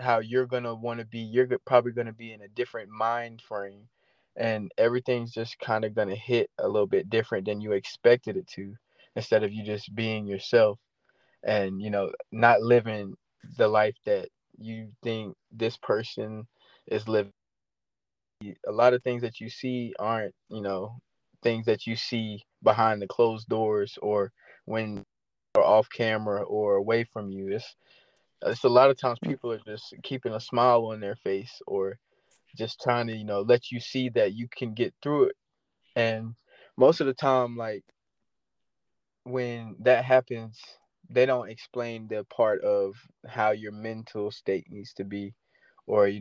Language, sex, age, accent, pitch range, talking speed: English, male, 20-39, American, 105-125 Hz, 175 wpm